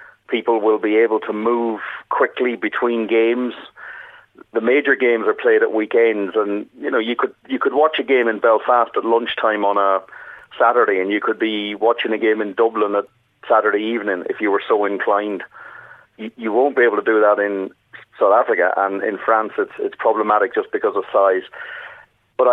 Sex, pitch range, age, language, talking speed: male, 105-145 Hz, 40-59, English, 190 wpm